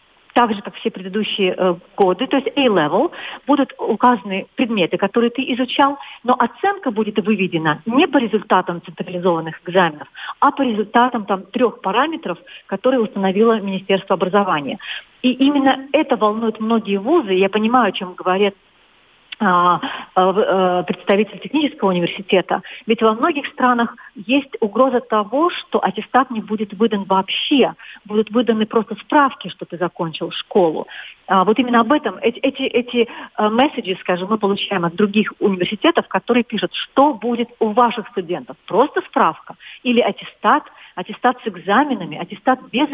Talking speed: 135 wpm